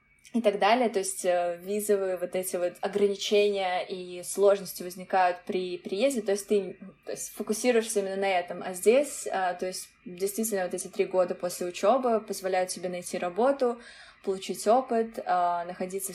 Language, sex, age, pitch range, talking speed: Russian, female, 20-39, 180-210 Hz, 155 wpm